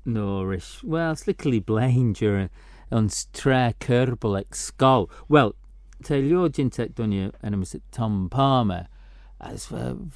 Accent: British